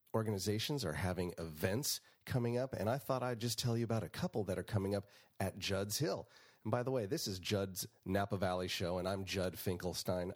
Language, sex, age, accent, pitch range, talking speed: English, male, 30-49, American, 95-120 Hz, 215 wpm